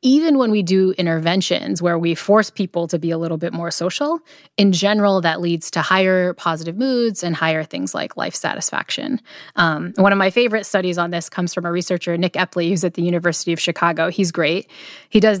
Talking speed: 210 wpm